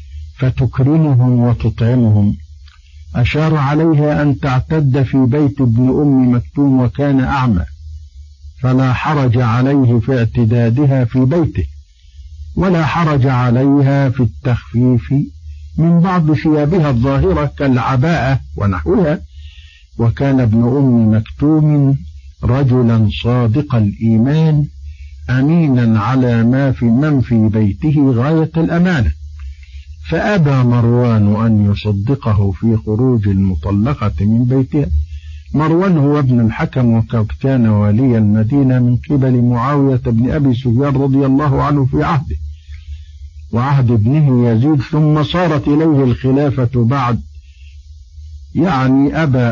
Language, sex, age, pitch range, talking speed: Arabic, male, 50-69, 105-140 Hz, 100 wpm